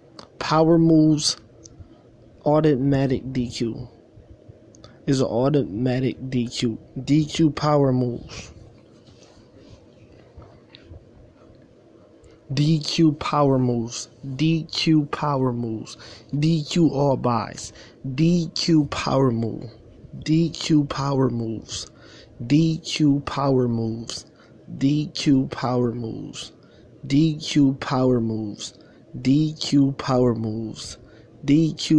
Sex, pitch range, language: male, 115-145 Hz, English